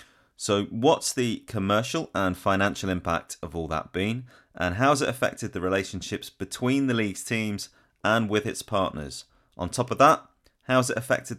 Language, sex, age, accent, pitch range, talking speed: English, male, 30-49, British, 85-110 Hz, 170 wpm